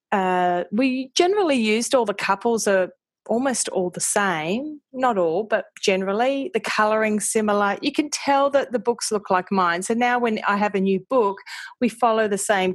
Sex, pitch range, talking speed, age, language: female, 185-225 Hz, 195 wpm, 30-49, English